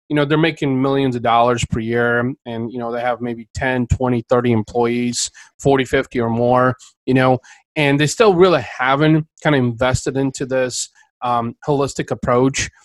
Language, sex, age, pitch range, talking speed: English, male, 30-49, 120-145 Hz, 175 wpm